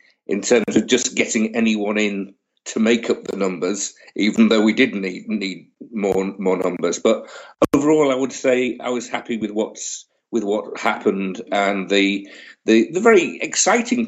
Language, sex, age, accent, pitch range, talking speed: English, male, 50-69, British, 110-160 Hz, 170 wpm